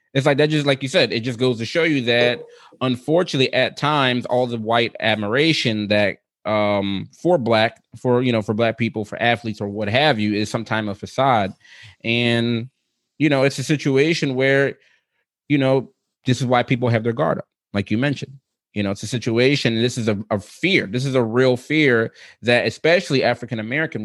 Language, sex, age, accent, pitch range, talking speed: English, male, 20-39, American, 110-135 Hz, 200 wpm